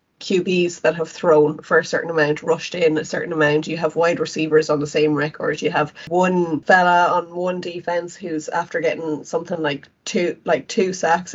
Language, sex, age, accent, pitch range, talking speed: English, female, 20-39, Irish, 155-180 Hz, 195 wpm